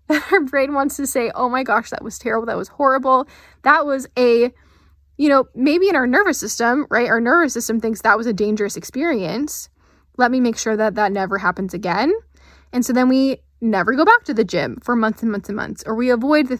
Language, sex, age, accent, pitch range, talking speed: English, female, 10-29, American, 220-275 Hz, 230 wpm